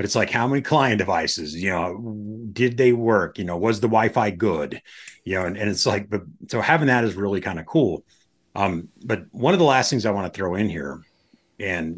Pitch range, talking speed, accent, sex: 95-125 Hz, 230 wpm, American, male